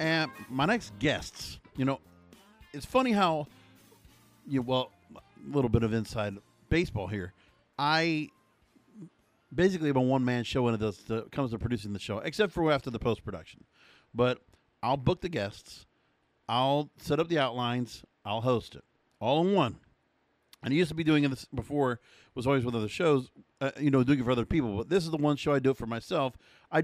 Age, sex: 50-69, male